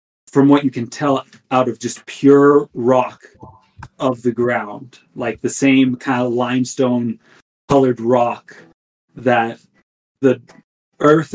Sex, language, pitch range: male, English, 120-140 Hz